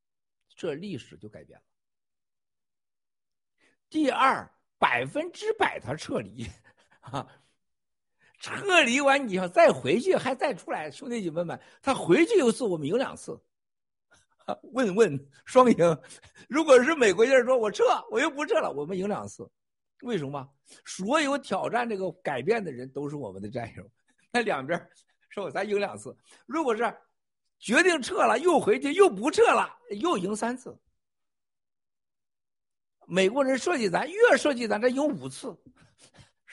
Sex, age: male, 50-69